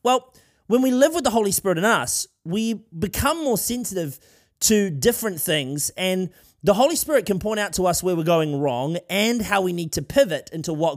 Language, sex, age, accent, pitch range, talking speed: English, male, 30-49, Australian, 155-220 Hz, 210 wpm